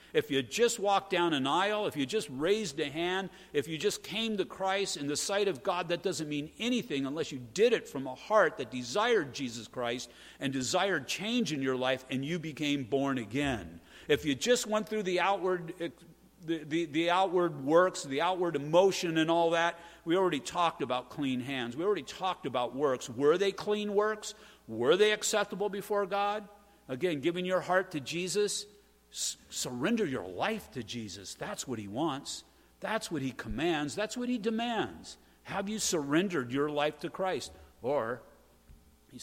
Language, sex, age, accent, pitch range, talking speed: English, male, 50-69, American, 130-195 Hz, 185 wpm